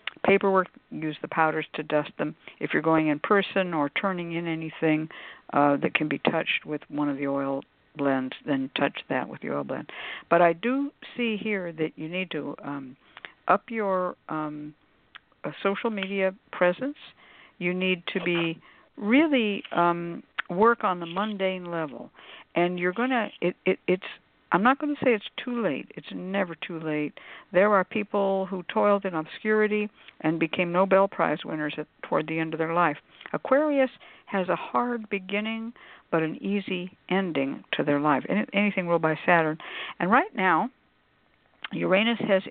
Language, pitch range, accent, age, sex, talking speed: English, 155-210 Hz, American, 60-79, female, 170 wpm